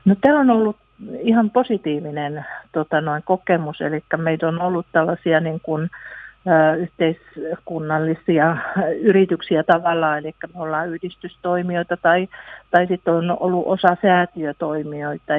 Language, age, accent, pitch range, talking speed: Finnish, 60-79, native, 155-200 Hz, 120 wpm